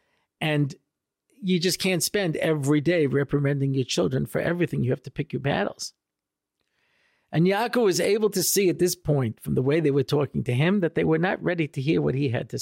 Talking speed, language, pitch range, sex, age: 220 wpm, English, 125-155 Hz, male, 50-69